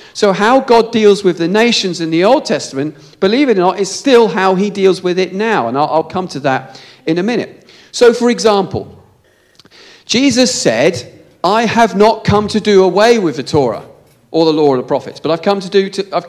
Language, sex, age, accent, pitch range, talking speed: English, male, 40-59, British, 160-220 Hz, 205 wpm